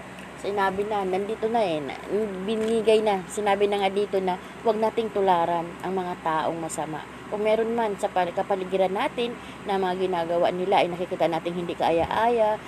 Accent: native